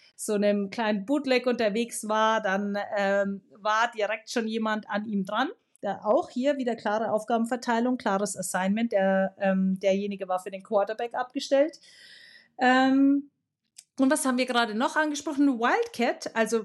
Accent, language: German, German